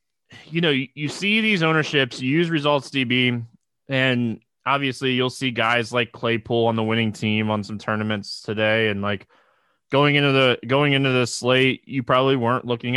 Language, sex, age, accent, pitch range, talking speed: English, male, 20-39, American, 115-165 Hz, 175 wpm